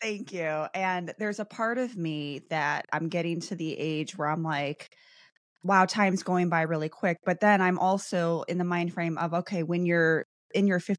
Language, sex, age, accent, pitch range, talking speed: English, female, 20-39, American, 150-180 Hz, 200 wpm